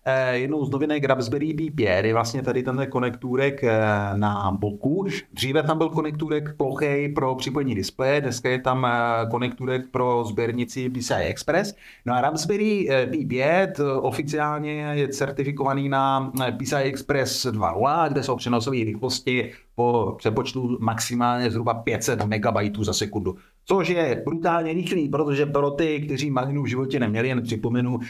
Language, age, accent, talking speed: Czech, 30-49, native, 140 wpm